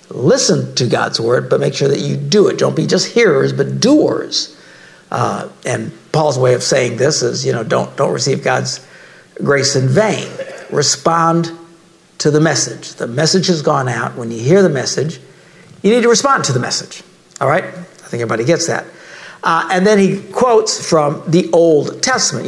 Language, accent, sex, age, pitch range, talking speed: English, American, male, 60-79, 140-190 Hz, 190 wpm